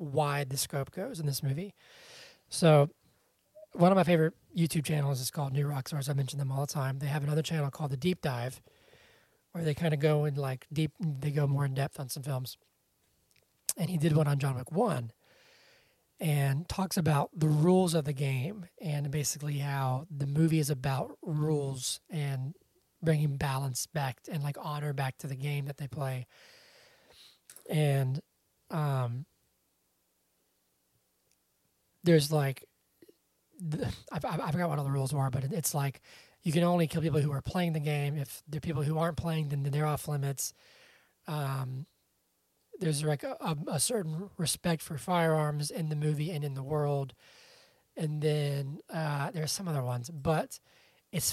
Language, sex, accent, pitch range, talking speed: English, male, American, 140-165 Hz, 170 wpm